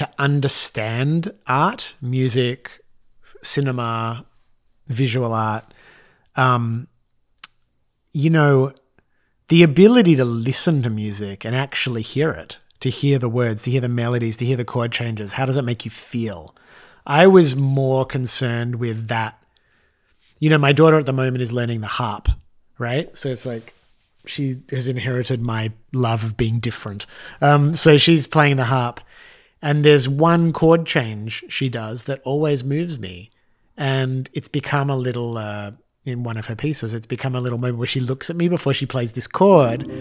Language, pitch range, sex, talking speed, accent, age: English, 115-145 Hz, male, 165 wpm, Australian, 30-49